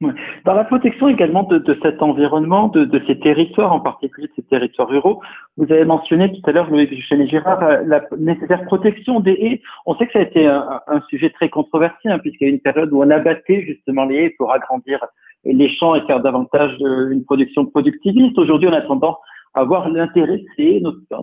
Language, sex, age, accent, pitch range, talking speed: French, male, 50-69, French, 145-215 Hz, 205 wpm